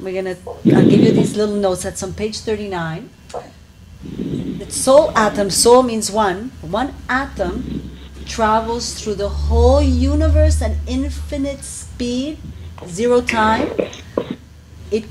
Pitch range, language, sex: 160-225 Hz, English, female